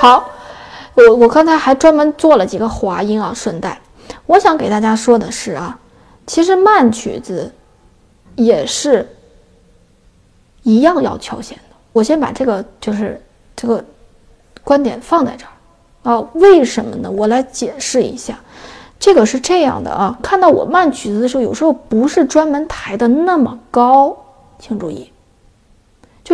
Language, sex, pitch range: Chinese, female, 230-310 Hz